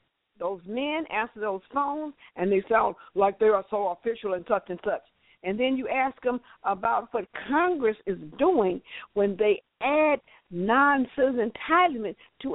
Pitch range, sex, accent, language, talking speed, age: 215-295 Hz, female, American, English, 160 wpm, 60-79